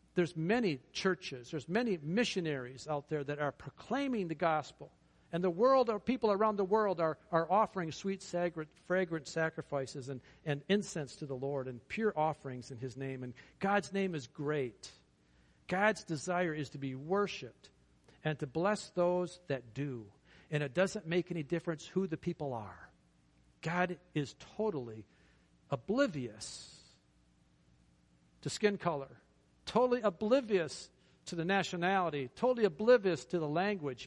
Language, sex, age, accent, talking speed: English, male, 50-69, American, 145 wpm